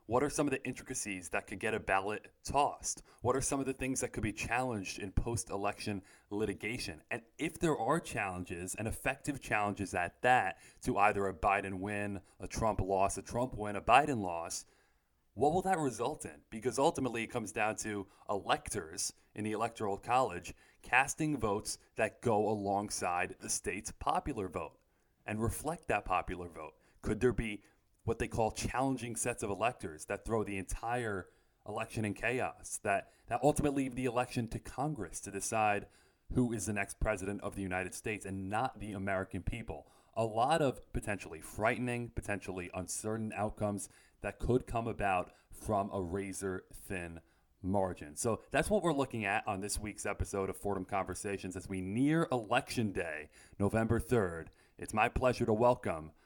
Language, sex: English, male